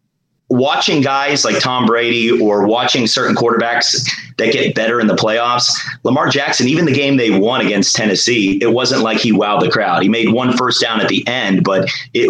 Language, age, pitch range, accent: English, 30-49, 110-135 Hz, American